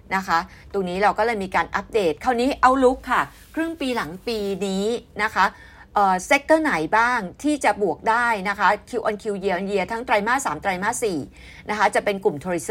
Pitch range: 175-230 Hz